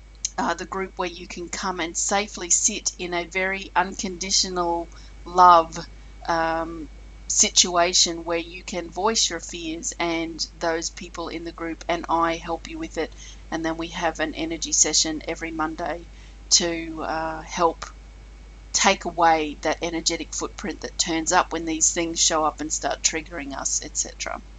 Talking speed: 160 wpm